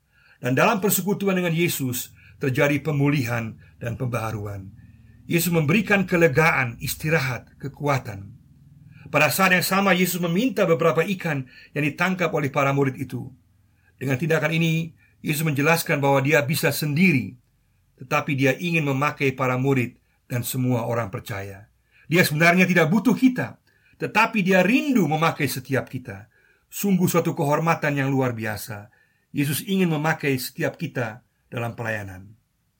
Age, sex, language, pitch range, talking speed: 50-69, male, Indonesian, 125-165 Hz, 130 wpm